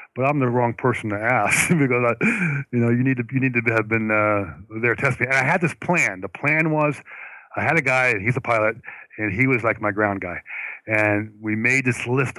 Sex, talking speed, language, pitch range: male, 240 wpm, English, 105-125 Hz